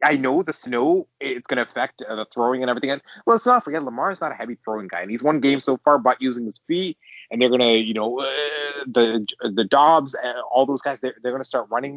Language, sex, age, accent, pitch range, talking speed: English, male, 30-49, American, 125-175 Hz, 255 wpm